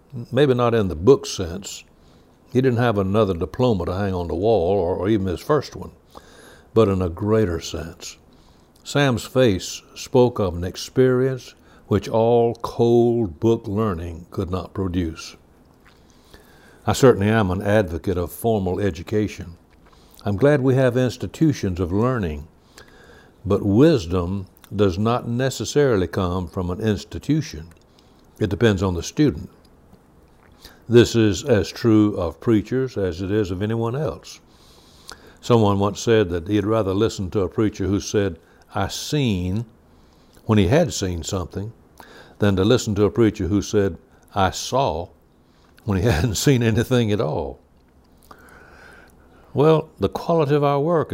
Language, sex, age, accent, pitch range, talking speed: English, male, 60-79, American, 85-115 Hz, 145 wpm